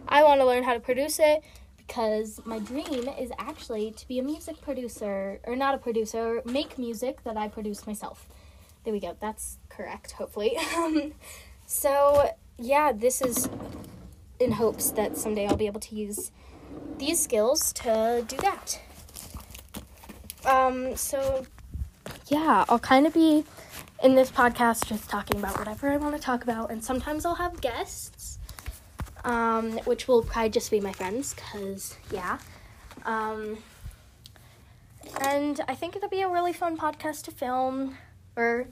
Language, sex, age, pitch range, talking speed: Arabic, female, 10-29, 220-290 Hz, 155 wpm